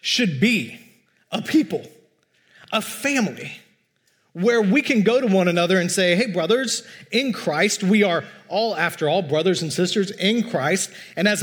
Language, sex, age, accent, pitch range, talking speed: English, male, 30-49, American, 160-220 Hz, 165 wpm